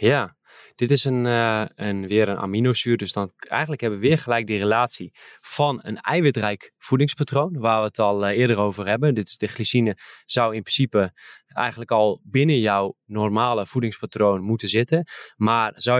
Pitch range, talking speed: 105-125 Hz, 160 wpm